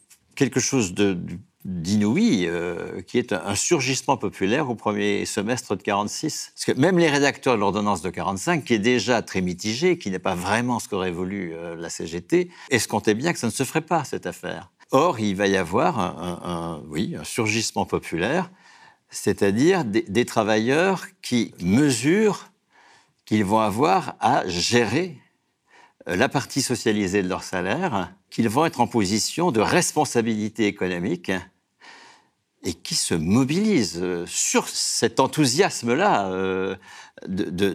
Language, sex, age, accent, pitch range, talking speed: French, male, 60-79, French, 95-135 Hz, 150 wpm